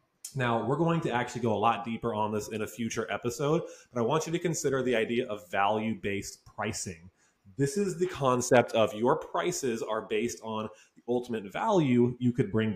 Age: 20-39